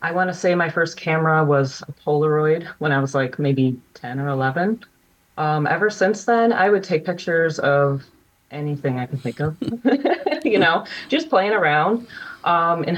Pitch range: 140-185 Hz